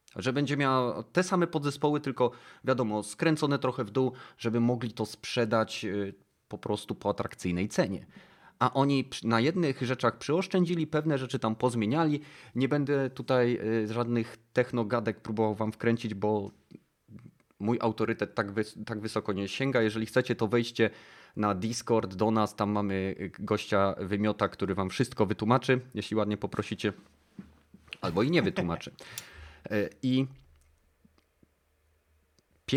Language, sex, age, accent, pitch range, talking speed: Polish, male, 30-49, native, 105-130 Hz, 130 wpm